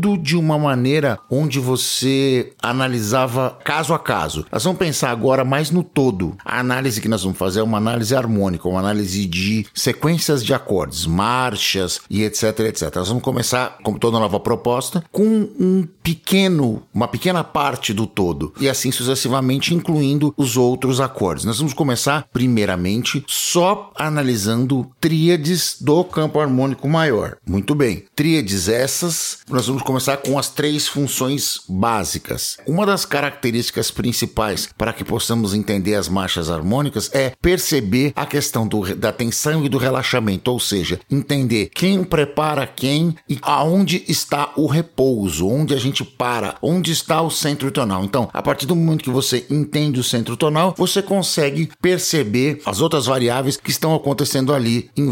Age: 50-69